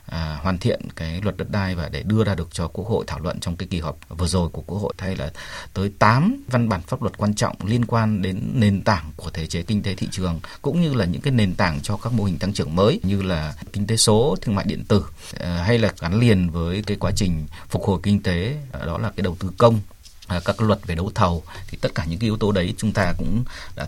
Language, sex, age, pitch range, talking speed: Vietnamese, male, 30-49, 85-110 Hz, 275 wpm